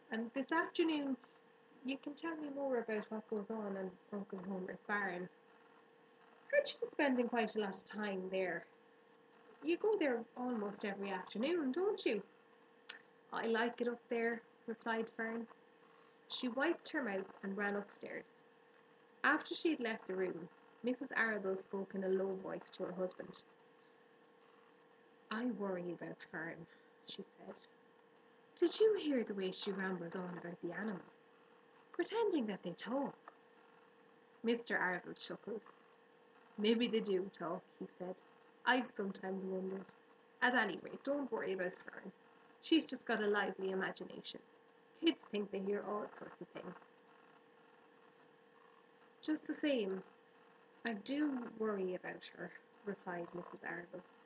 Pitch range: 190-265 Hz